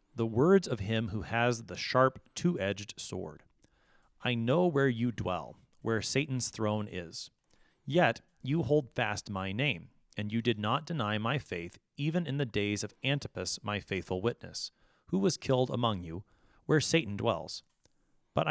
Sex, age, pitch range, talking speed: male, 30-49, 105-145 Hz, 160 wpm